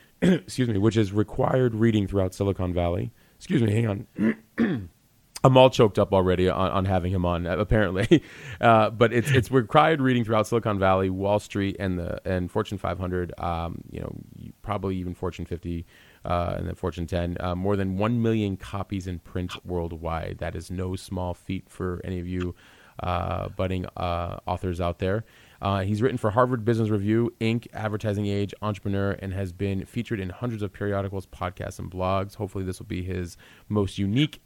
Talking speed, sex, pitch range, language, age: 185 wpm, male, 95-110 Hz, English, 30-49